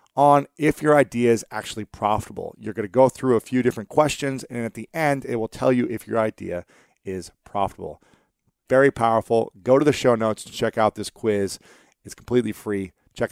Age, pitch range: 40-59, 105-135 Hz